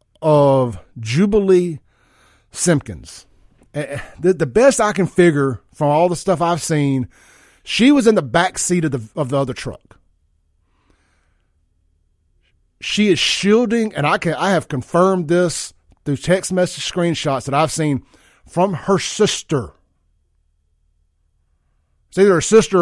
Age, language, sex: 50-69, English, male